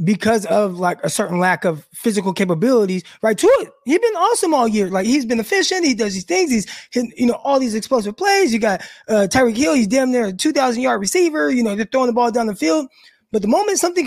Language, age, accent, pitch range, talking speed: English, 20-39, American, 210-265 Hz, 250 wpm